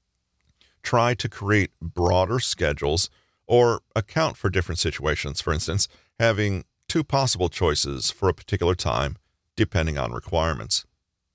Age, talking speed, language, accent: 40-59, 120 wpm, English, American